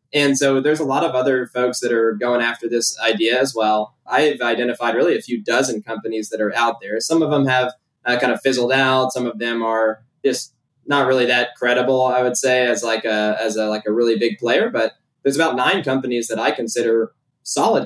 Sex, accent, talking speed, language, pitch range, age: male, American, 225 wpm, English, 115-130 Hz, 20-39